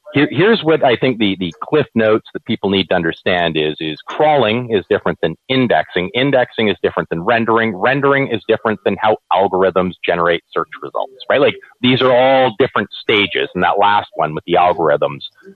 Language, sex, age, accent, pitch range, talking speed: English, male, 40-59, American, 105-155 Hz, 185 wpm